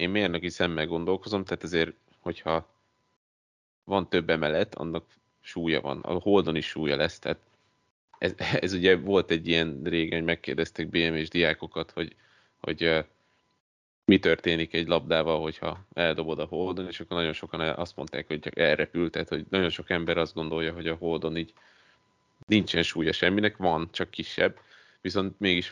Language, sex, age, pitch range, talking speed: Hungarian, male, 30-49, 80-90 Hz, 160 wpm